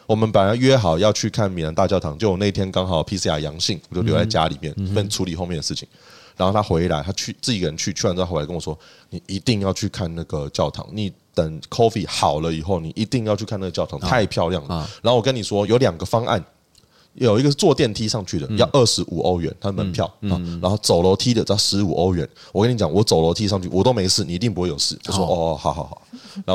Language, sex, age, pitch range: Chinese, male, 20-39, 90-115 Hz